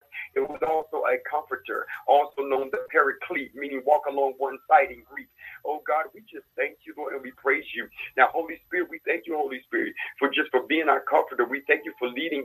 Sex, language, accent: male, English, American